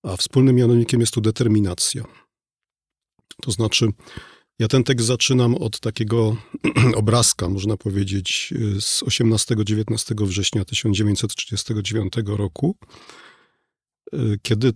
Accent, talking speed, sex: native, 95 wpm, male